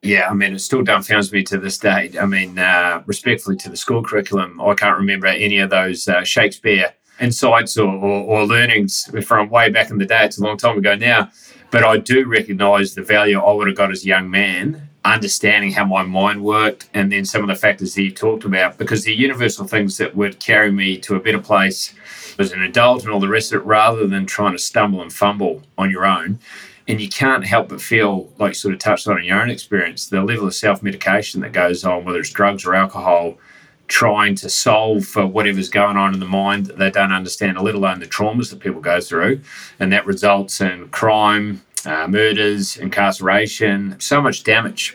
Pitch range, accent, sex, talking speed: 95-110 Hz, Australian, male, 220 wpm